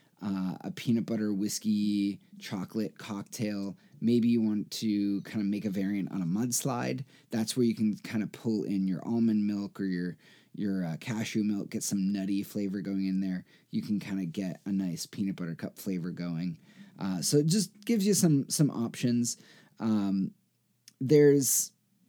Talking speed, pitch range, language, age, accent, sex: 180 wpm, 100-125 Hz, English, 20-39, American, male